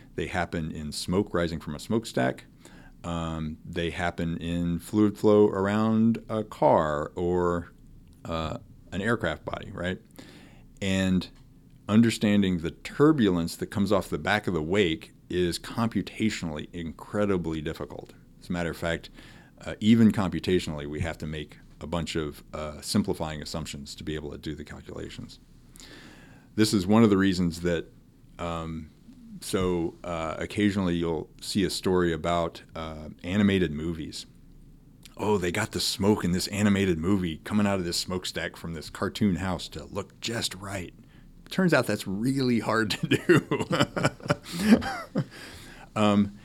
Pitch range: 85-110 Hz